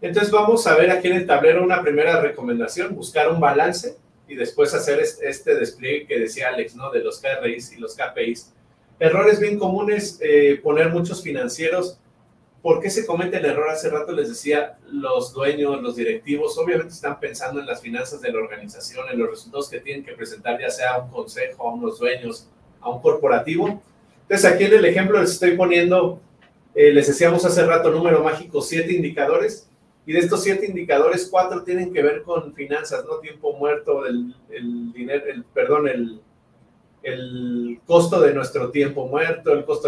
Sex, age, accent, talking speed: male, 40-59, Mexican, 185 wpm